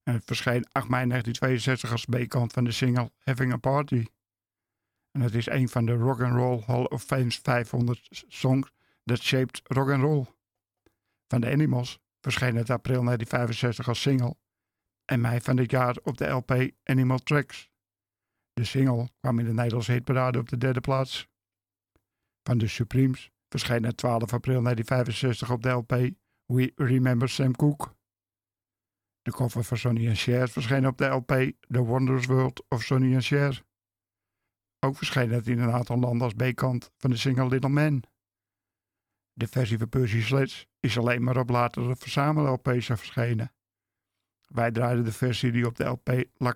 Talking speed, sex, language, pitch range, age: 165 wpm, male, Dutch, 115-130 Hz, 50-69